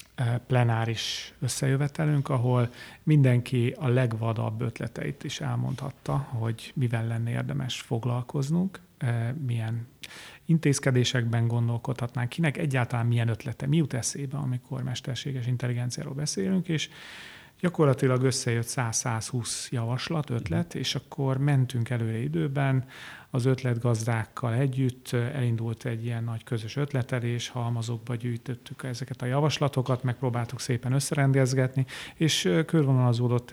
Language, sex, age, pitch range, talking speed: Hungarian, male, 40-59, 120-135 Hz, 105 wpm